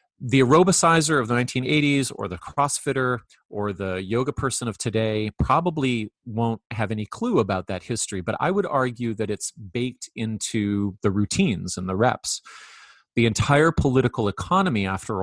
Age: 30-49